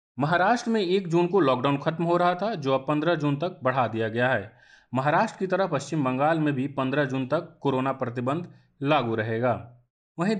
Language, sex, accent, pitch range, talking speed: Hindi, male, native, 125-165 Hz, 195 wpm